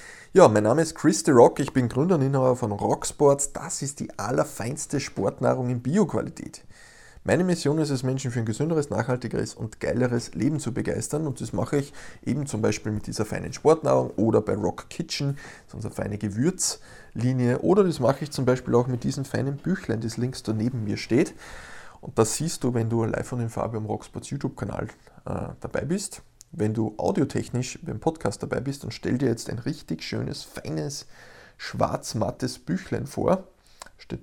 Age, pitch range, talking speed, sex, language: 20-39, 110-140 Hz, 180 wpm, male, German